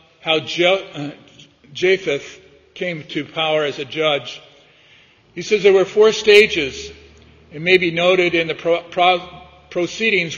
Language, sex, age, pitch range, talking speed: English, male, 50-69, 145-180 Hz, 120 wpm